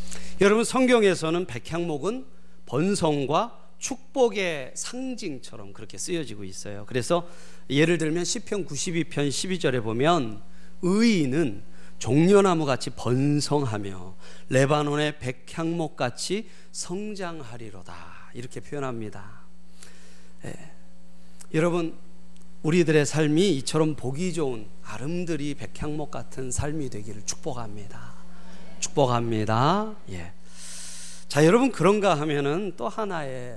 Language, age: Korean, 40-59